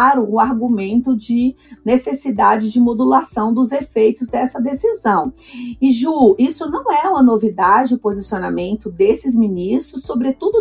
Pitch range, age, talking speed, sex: 225-280 Hz, 40-59, 125 wpm, female